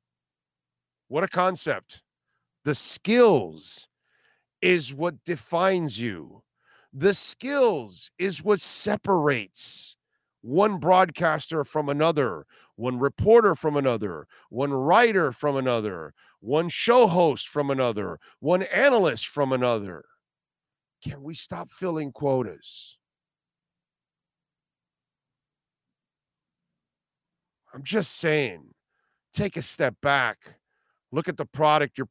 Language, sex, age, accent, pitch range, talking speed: English, male, 50-69, American, 125-180 Hz, 95 wpm